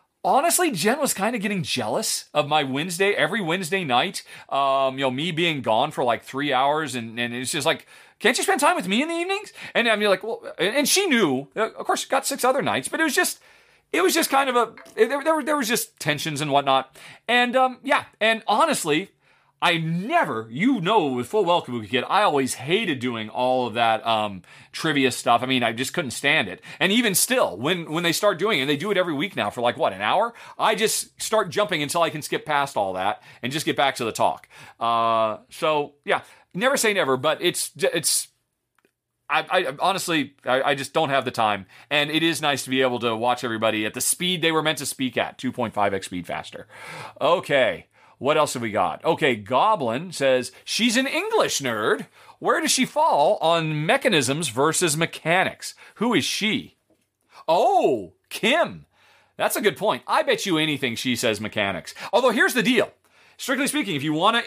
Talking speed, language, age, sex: 215 wpm, English, 30-49, male